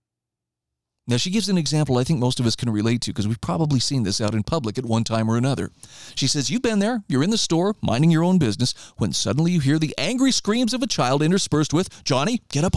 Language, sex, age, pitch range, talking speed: English, male, 40-59, 115-175 Hz, 255 wpm